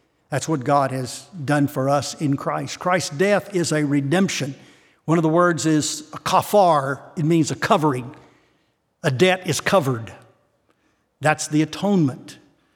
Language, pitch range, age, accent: English, 140-175 Hz, 60-79, American